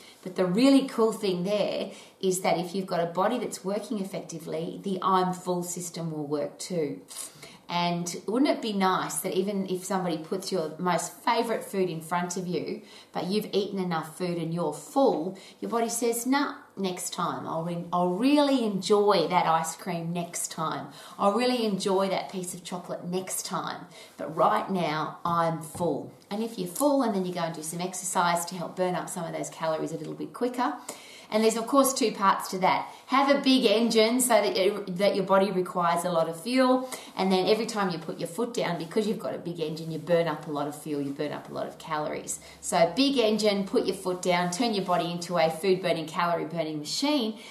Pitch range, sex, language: 175-240 Hz, female, English